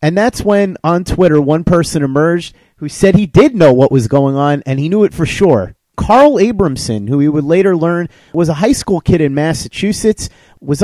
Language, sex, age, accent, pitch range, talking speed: English, male, 30-49, American, 140-195 Hz, 210 wpm